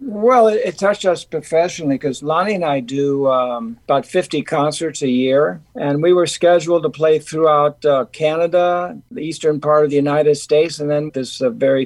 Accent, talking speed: American, 185 wpm